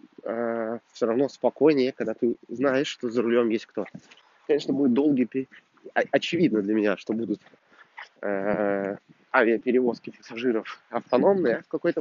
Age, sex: 20-39, male